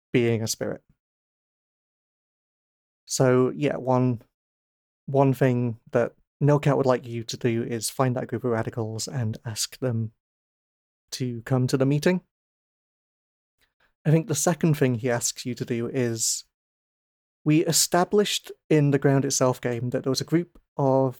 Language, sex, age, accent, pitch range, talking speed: English, male, 30-49, British, 120-145 Hz, 150 wpm